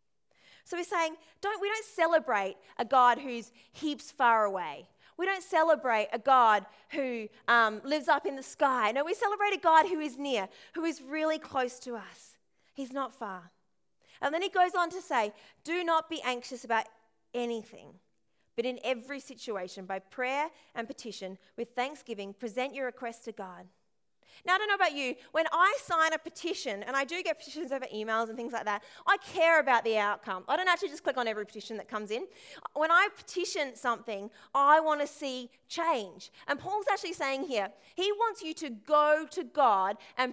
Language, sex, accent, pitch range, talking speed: English, female, Australian, 230-330 Hz, 190 wpm